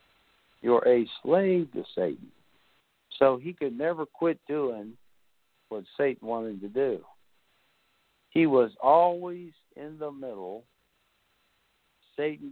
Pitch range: 120-160 Hz